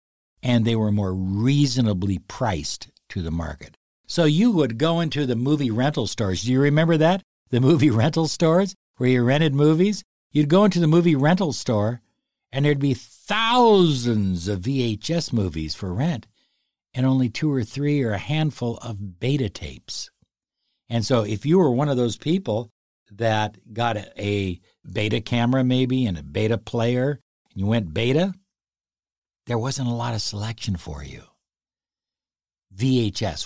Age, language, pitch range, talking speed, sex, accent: 60-79, English, 100-145 Hz, 160 wpm, male, American